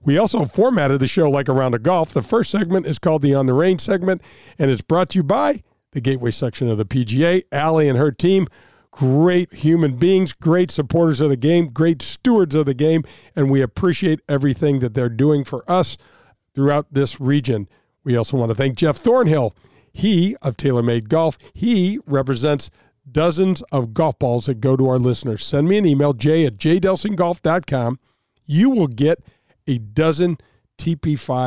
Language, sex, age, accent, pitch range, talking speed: English, male, 50-69, American, 130-170 Hz, 180 wpm